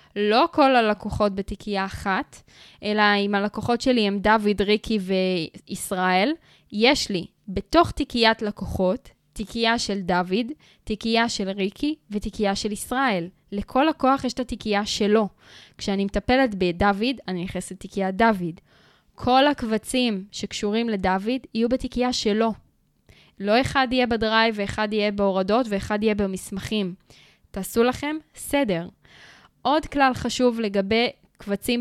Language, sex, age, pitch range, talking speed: Hebrew, female, 10-29, 200-255 Hz, 125 wpm